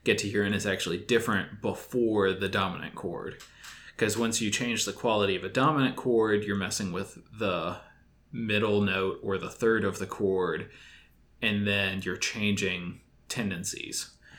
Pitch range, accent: 100-115 Hz, American